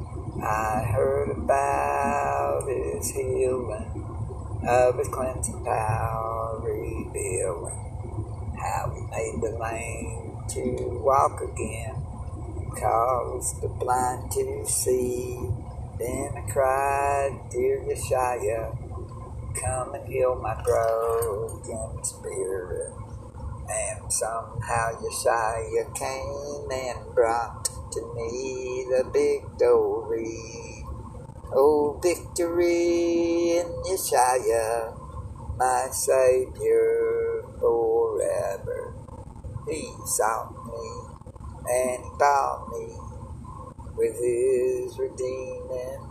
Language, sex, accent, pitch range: English, male, American, 115-175 Hz